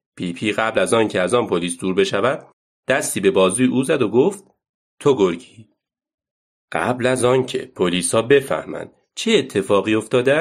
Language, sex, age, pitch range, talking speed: Persian, male, 40-59, 100-150 Hz, 160 wpm